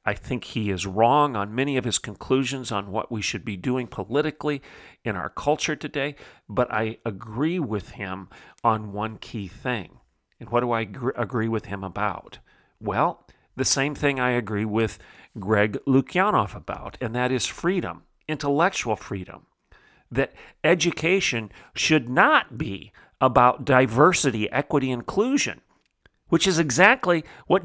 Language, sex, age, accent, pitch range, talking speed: English, male, 40-59, American, 115-150 Hz, 145 wpm